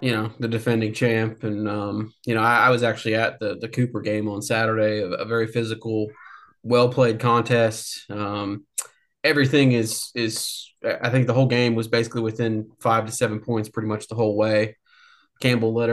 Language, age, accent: English, 20-39, American